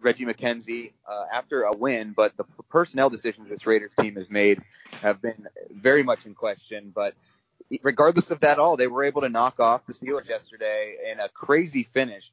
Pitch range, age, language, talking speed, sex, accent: 105-125 Hz, 30-49, English, 190 wpm, male, American